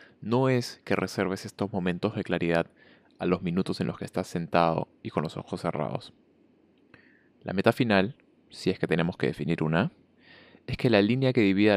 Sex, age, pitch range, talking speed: male, 20-39, 85-105 Hz, 190 wpm